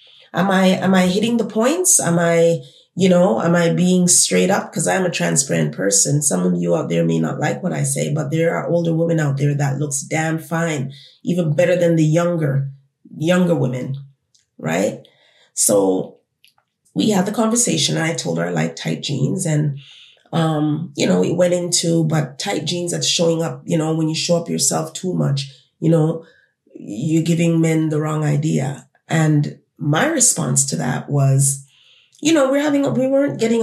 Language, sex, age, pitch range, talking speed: English, female, 30-49, 140-175 Hz, 195 wpm